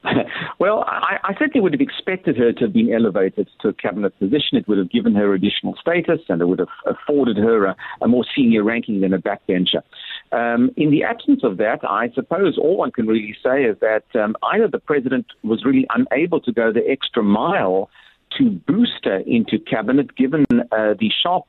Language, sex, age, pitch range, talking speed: English, male, 50-69, 120-175 Hz, 205 wpm